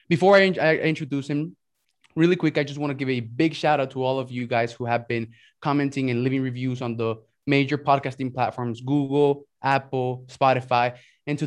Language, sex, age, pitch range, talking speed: English, male, 20-39, 130-155 Hz, 195 wpm